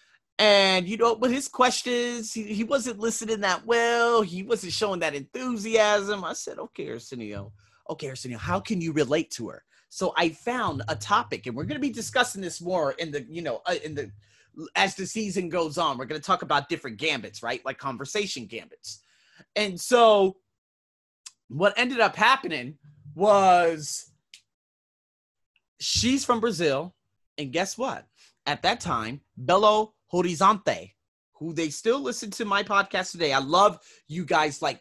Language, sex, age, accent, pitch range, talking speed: English, male, 30-49, American, 145-210 Hz, 165 wpm